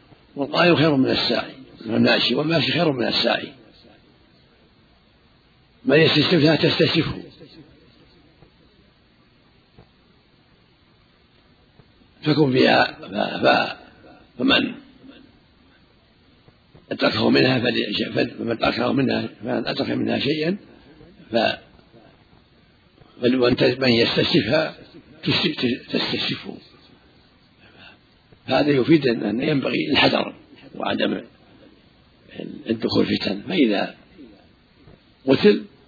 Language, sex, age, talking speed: Arabic, male, 60-79, 60 wpm